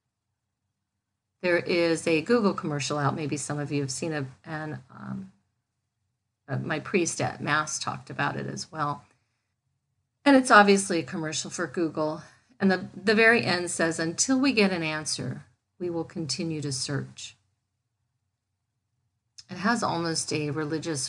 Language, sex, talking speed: English, female, 145 wpm